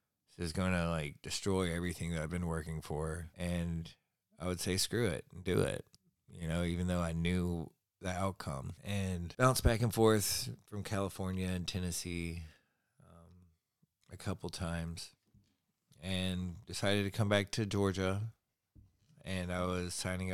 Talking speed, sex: 150 wpm, male